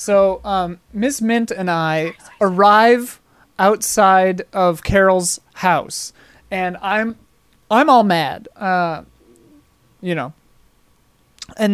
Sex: male